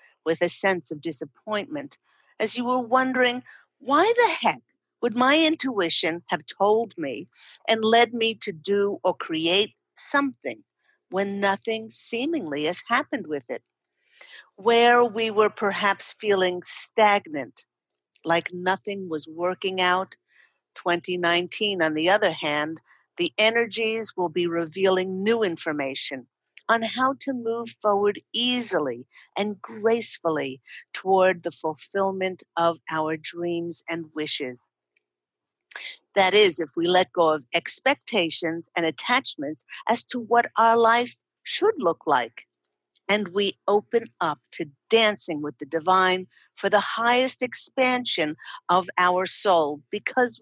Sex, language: female, English